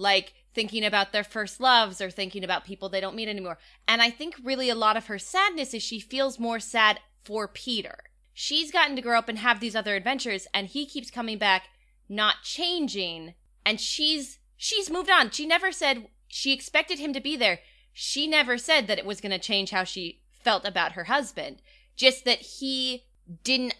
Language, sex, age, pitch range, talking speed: English, female, 20-39, 195-250 Hz, 200 wpm